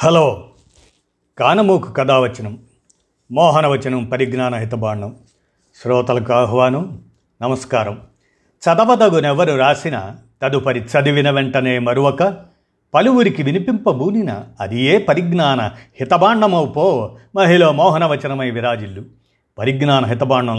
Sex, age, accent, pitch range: male, 50-69, native, 120-165 Hz